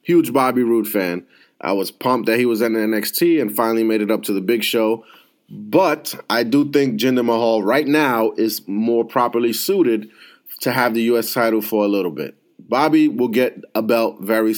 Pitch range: 115-145 Hz